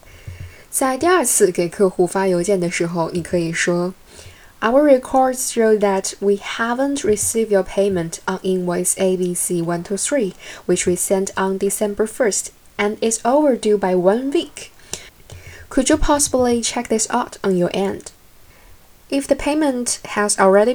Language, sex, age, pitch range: Chinese, female, 10-29, 180-235 Hz